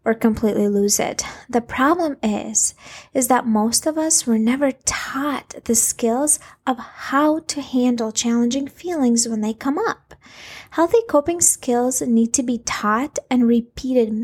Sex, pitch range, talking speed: female, 225-265 Hz, 150 wpm